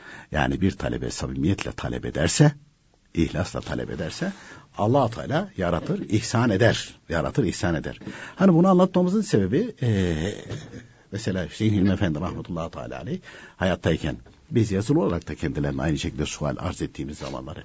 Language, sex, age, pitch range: Turkish, male, 60-79, 75-115 Hz